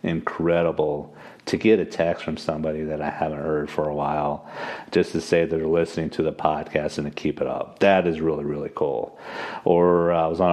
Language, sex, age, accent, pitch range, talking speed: English, male, 40-59, American, 75-85 Hz, 205 wpm